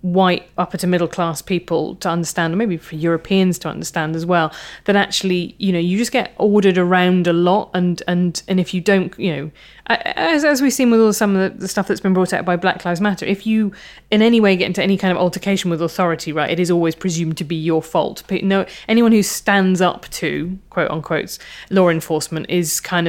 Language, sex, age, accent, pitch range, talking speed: English, female, 20-39, British, 170-200 Hz, 225 wpm